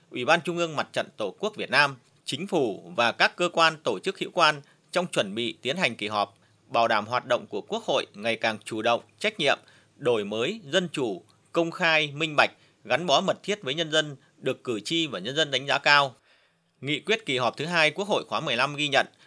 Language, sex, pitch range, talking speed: Vietnamese, male, 130-170 Hz, 235 wpm